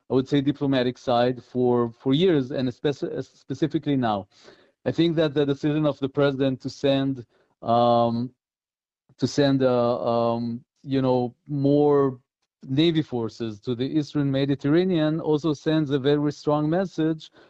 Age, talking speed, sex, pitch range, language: 40-59, 145 wpm, male, 125-160 Hz, English